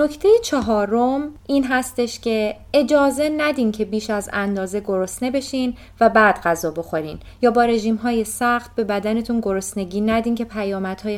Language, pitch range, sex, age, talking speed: Persian, 185-240 Hz, female, 20-39, 145 wpm